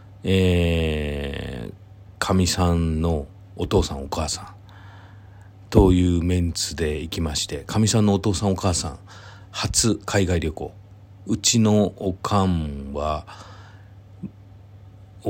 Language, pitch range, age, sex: Japanese, 85-100 Hz, 40-59, male